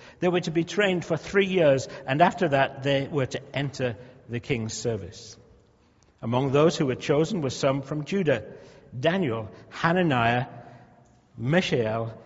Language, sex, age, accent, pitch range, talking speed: English, male, 60-79, British, 125-175 Hz, 145 wpm